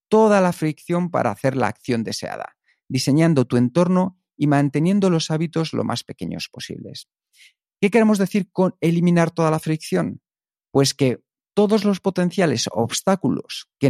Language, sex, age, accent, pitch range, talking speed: Spanish, male, 40-59, Spanish, 130-180 Hz, 145 wpm